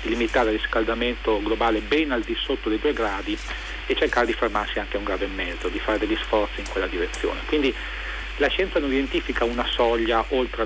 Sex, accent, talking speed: male, native, 205 wpm